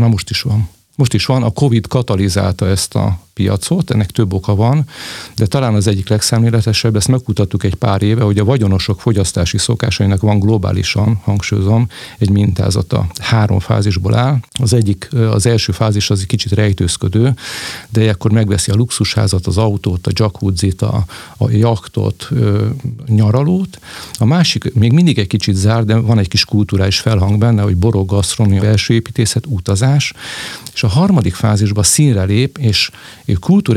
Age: 50-69